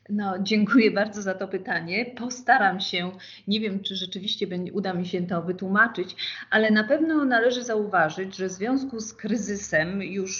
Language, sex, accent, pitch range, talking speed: Polish, female, native, 185-235 Hz, 160 wpm